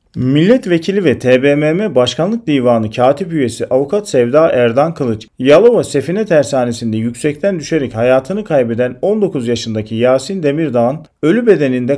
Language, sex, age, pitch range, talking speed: Turkish, male, 40-59, 125-175 Hz, 120 wpm